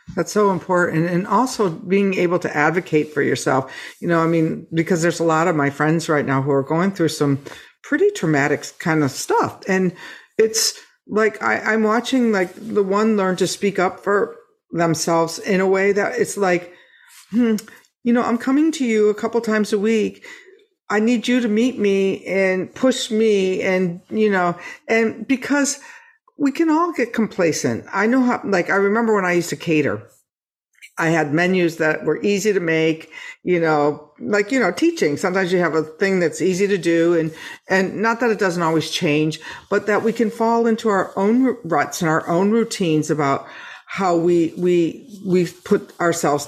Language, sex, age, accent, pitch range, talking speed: English, female, 50-69, American, 165-220 Hz, 190 wpm